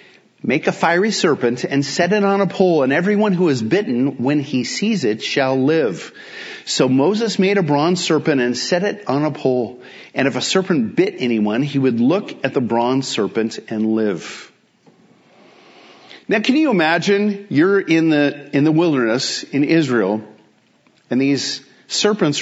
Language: English